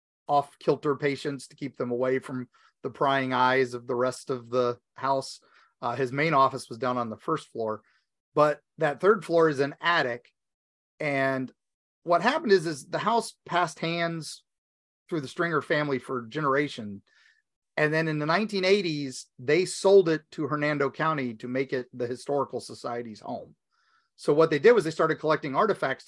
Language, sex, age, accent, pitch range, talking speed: English, male, 30-49, American, 125-160 Hz, 175 wpm